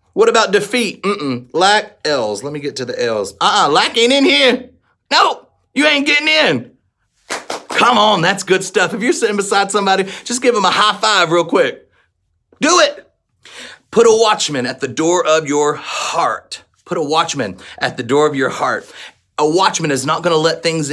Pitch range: 130-215 Hz